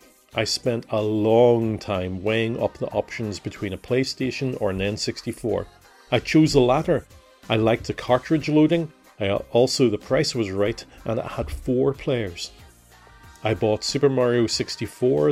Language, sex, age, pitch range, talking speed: English, male, 40-59, 105-130 Hz, 155 wpm